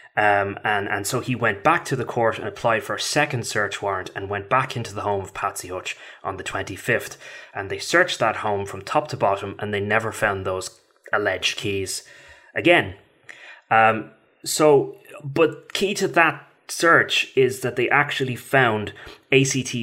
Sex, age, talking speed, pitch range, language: male, 20-39, 180 wpm, 100-135 Hz, English